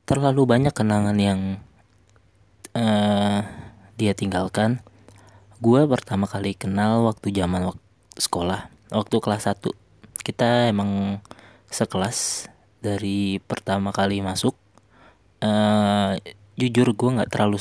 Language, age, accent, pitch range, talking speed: Indonesian, 20-39, native, 100-115 Hz, 100 wpm